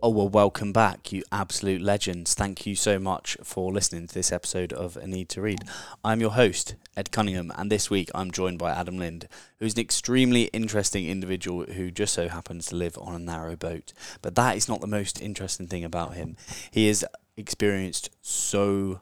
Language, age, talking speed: English, 10-29, 200 wpm